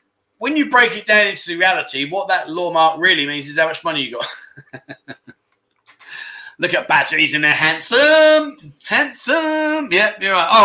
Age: 30-49